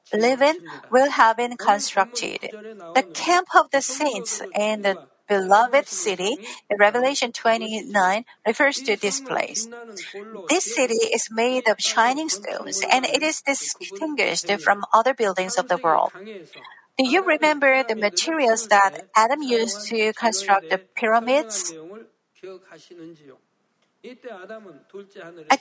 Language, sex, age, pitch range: Korean, female, 50-69, 200-265 Hz